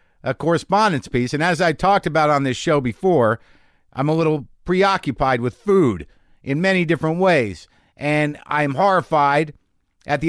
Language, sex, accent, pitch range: English, male, American, 120-175 Hz